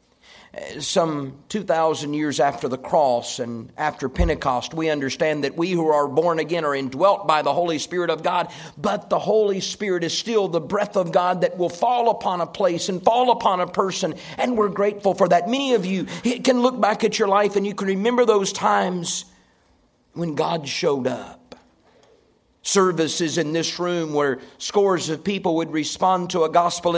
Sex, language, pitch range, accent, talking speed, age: male, English, 135-185 Hz, American, 185 wpm, 50-69